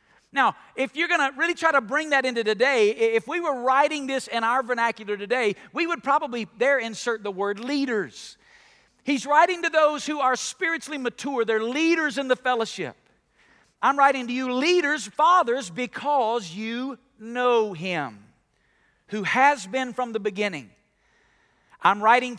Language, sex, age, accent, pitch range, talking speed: English, male, 50-69, American, 225-295 Hz, 160 wpm